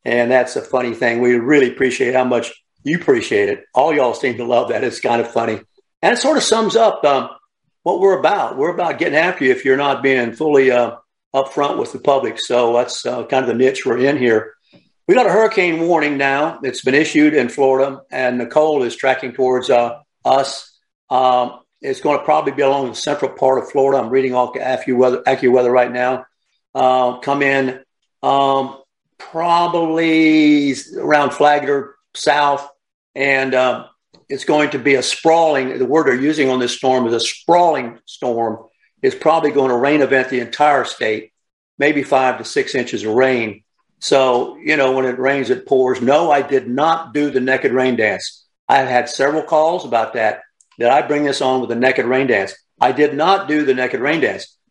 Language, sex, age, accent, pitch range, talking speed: English, male, 50-69, American, 125-150 Hz, 200 wpm